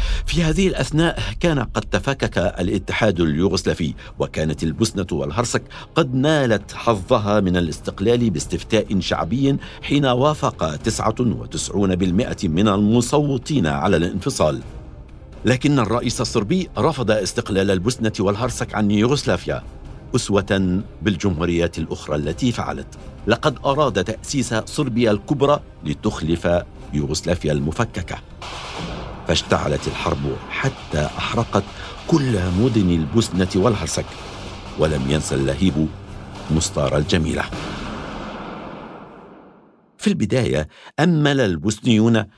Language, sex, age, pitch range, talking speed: Arabic, male, 60-79, 90-125 Hz, 90 wpm